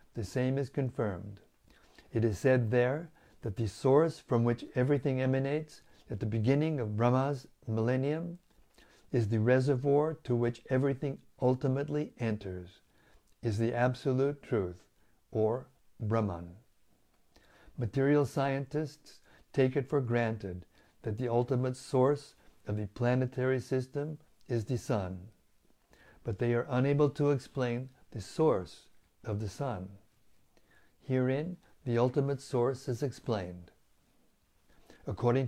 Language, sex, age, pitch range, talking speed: English, male, 60-79, 115-140 Hz, 120 wpm